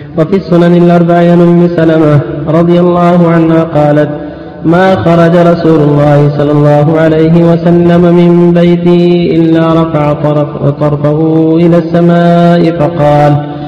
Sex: male